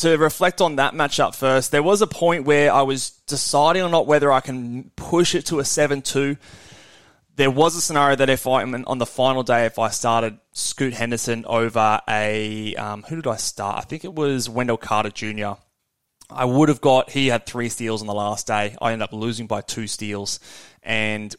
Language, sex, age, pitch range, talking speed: English, male, 20-39, 105-135 Hz, 210 wpm